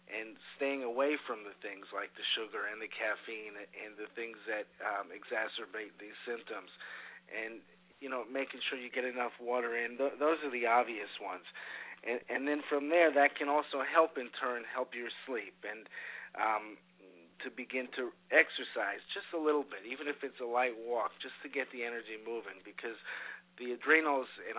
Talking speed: 185 wpm